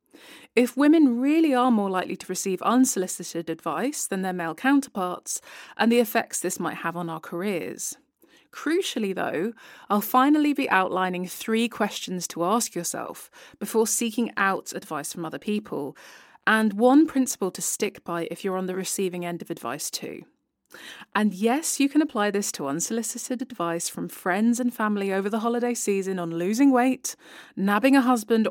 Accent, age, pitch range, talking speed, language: British, 20-39, 180-240 Hz, 165 wpm, English